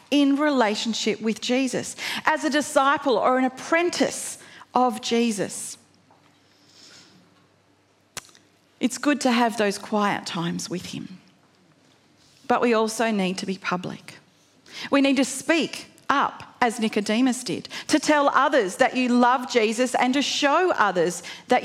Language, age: English, 40-59